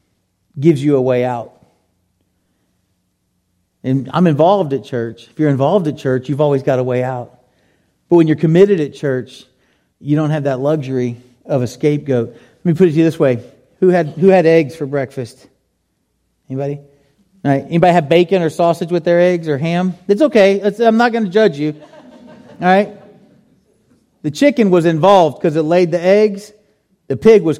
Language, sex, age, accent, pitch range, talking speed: English, male, 40-59, American, 145-205 Hz, 185 wpm